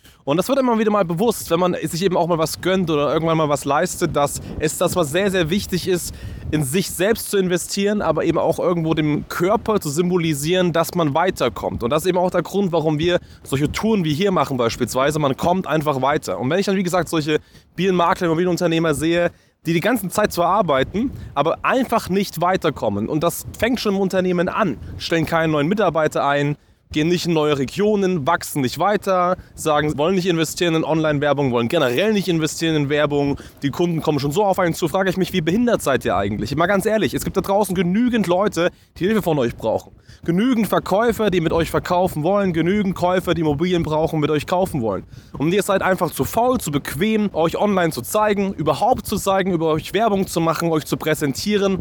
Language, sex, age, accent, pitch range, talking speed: German, male, 20-39, German, 155-195 Hz, 215 wpm